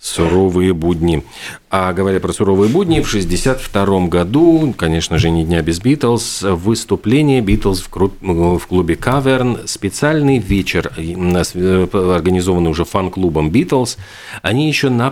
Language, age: Russian, 40-59